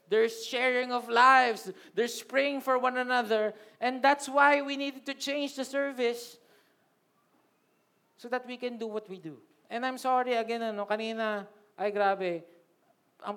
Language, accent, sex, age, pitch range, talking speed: Filipino, native, male, 20-39, 180-220 Hz, 155 wpm